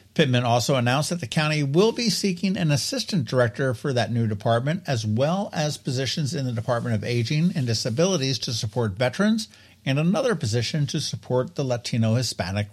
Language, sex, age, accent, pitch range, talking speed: English, male, 60-79, American, 105-140 Hz, 175 wpm